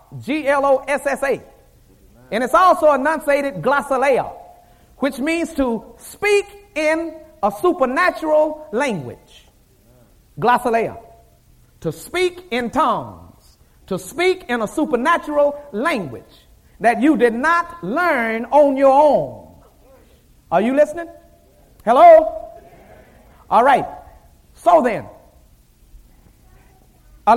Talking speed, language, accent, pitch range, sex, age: 90 wpm, English, American, 230-315 Hz, male, 40-59